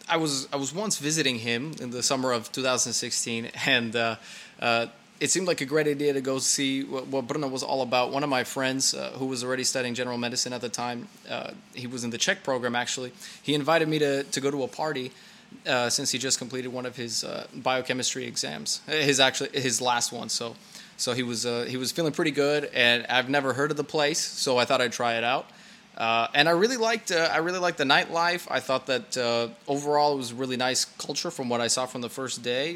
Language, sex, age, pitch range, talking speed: Czech, male, 20-39, 125-155 Hz, 240 wpm